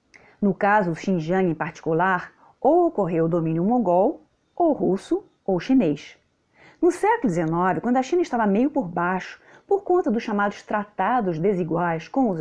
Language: Portuguese